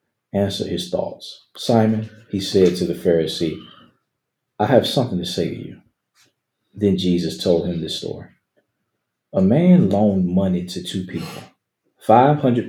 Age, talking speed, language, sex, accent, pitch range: 40-59, 140 wpm, English, male, American, 90-115 Hz